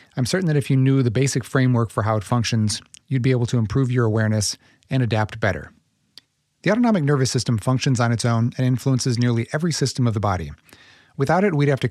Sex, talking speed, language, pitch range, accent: male, 220 wpm, English, 110-135 Hz, American